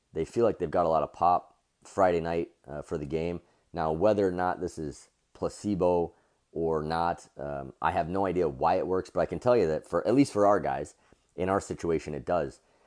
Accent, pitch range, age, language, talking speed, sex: American, 80-100 Hz, 30-49, English, 230 wpm, male